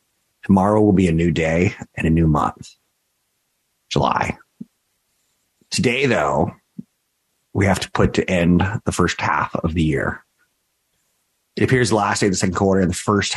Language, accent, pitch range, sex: English, American, 85-100 Hz, male